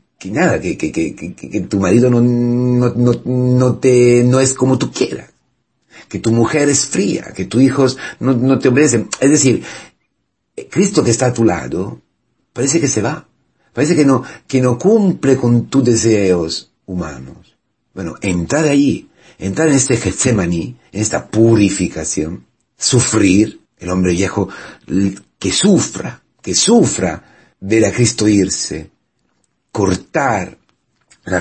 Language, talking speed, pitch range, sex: Spanish, 145 wpm, 95-130 Hz, male